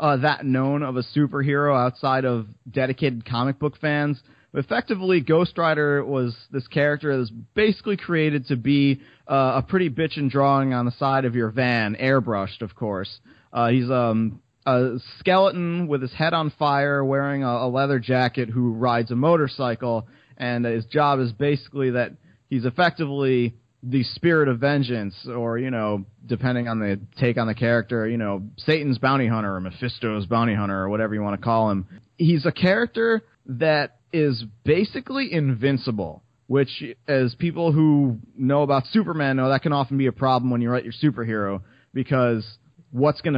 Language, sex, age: English, male, 30-49